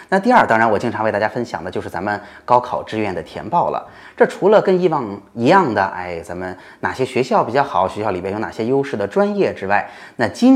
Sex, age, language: male, 20-39, Chinese